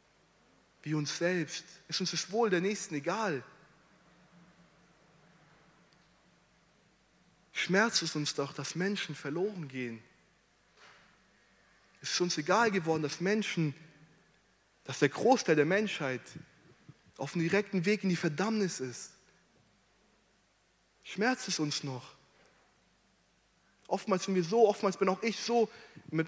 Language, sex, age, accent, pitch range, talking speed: German, male, 20-39, German, 150-195 Hz, 120 wpm